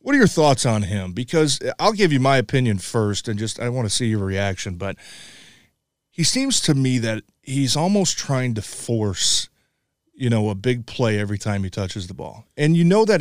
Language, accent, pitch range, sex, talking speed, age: English, American, 110-140 Hz, male, 215 wpm, 30-49